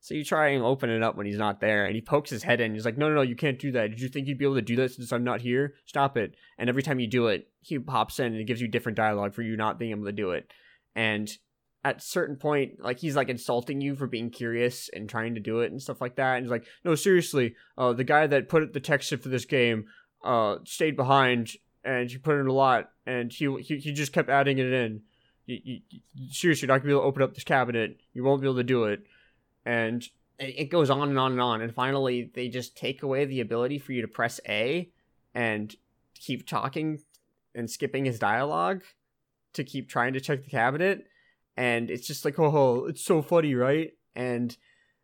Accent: American